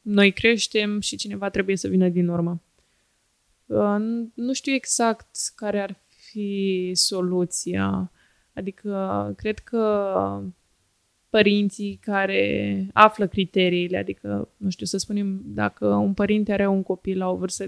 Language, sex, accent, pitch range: Romanian, female, native, 180-205 Hz